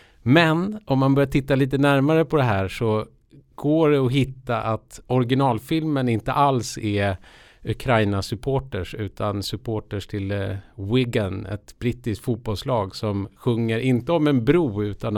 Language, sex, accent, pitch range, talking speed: Swedish, male, Norwegian, 105-135 Hz, 140 wpm